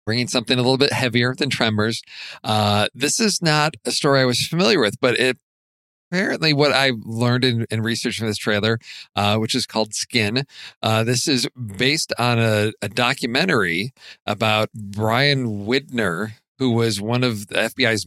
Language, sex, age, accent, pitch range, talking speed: English, male, 40-59, American, 105-125 Hz, 175 wpm